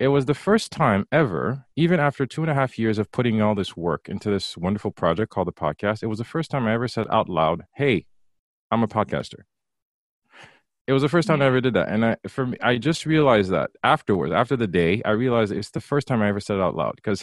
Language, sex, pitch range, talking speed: English, male, 105-145 Hz, 255 wpm